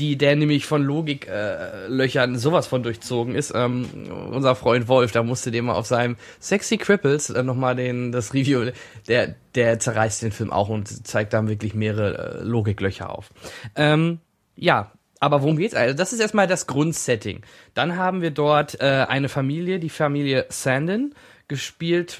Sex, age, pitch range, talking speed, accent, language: male, 20-39, 120-160 Hz, 170 wpm, German, German